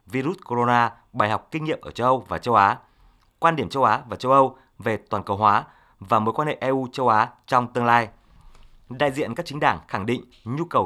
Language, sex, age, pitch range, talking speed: Vietnamese, male, 20-39, 110-140 Hz, 230 wpm